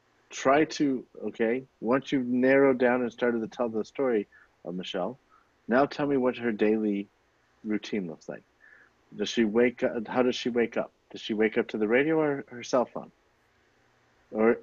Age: 50-69